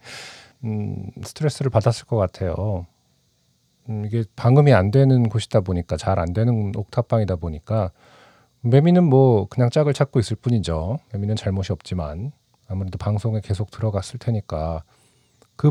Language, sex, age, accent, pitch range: Korean, male, 40-59, native, 100-130 Hz